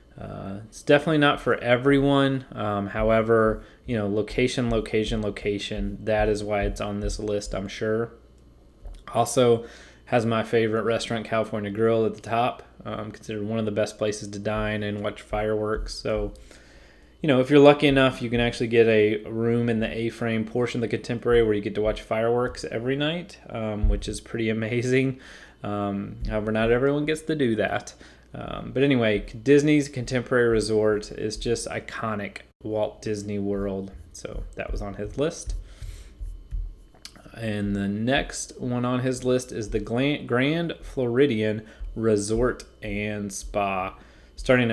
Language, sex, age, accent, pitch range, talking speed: English, male, 20-39, American, 105-125 Hz, 155 wpm